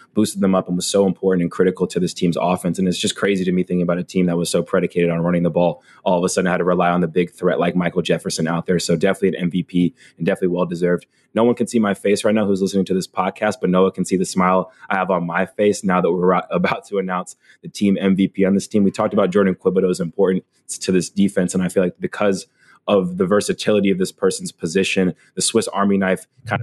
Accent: American